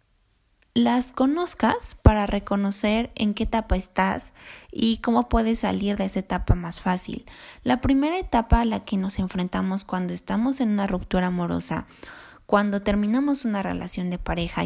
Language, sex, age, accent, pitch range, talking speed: Spanish, female, 20-39, Mexican, 185-235 Hz, 150 wpm